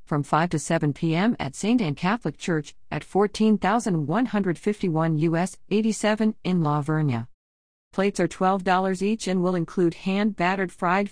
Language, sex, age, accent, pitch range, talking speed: English, female, 50-69, American, 145-190 Hz, 140 wpm